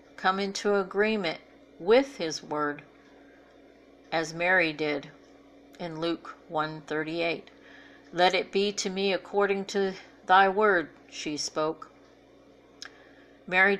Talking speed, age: 115 wpm, 50-69